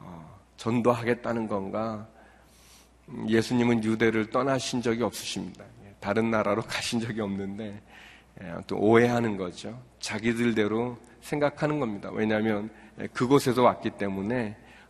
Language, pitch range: Korean, 105-135 Hz